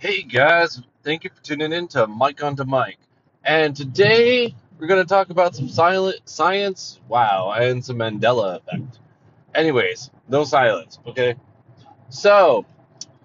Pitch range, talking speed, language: 120-150 Hz, 145 wpm, English